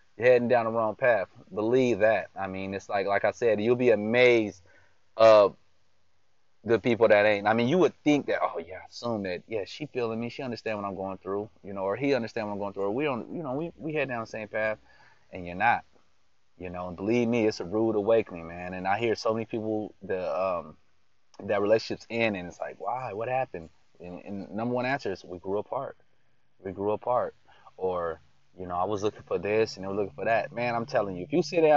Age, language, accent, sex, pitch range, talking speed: 20-39, English, American, male, 95-140 Hz, 245 wpm